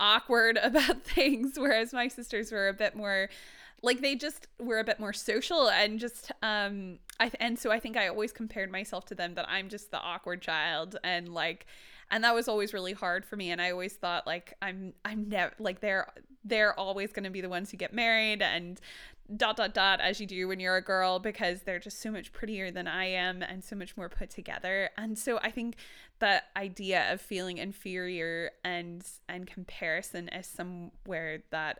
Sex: female